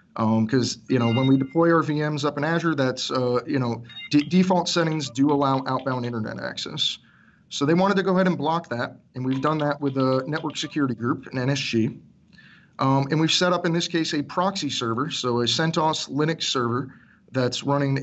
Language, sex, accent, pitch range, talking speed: English, male, American, 130-160 Hz, 205 wpm